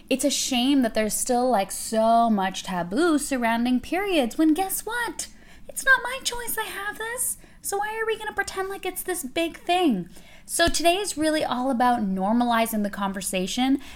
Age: 10-29